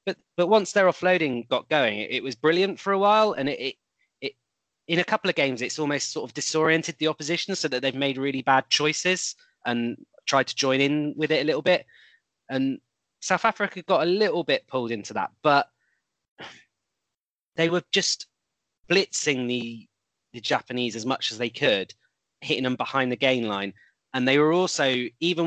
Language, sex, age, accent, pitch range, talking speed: English, male, 20-39, British, 125-155 Hz, 190 wpm